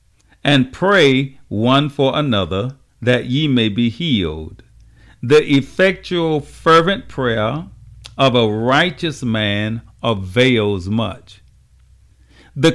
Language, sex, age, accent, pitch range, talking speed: English, male, 50-69, American, 105-140 Hz, 100 wpm